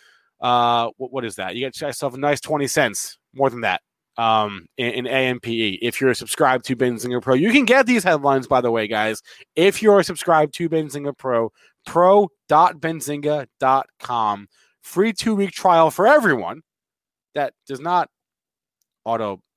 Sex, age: male, 30-49